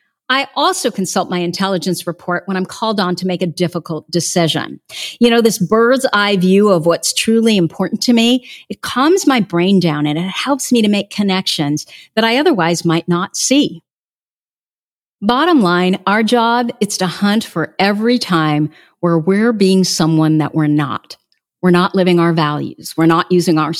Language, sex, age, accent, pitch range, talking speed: English, female, 50-69, American, 170-230 Hz, 180 wpm